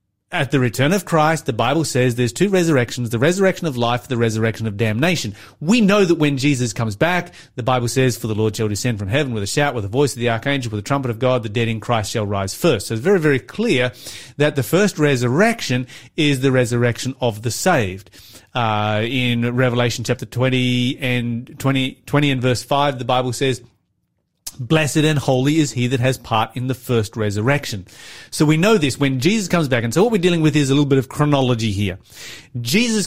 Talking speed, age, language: 220 wpm, 30-49, English